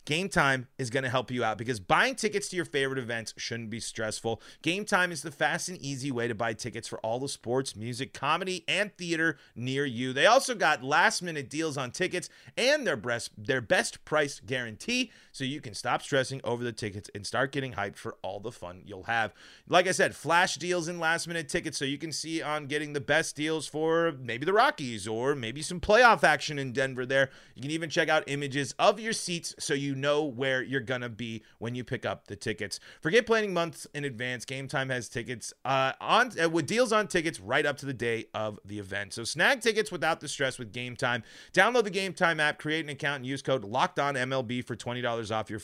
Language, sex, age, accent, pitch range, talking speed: English, male, 30-49, American, 120-175 Hz, 230 wpm